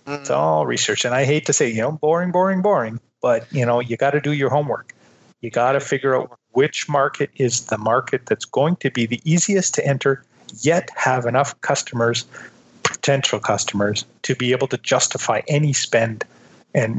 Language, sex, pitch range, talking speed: English, male, 115-145 Hz, 190 wpm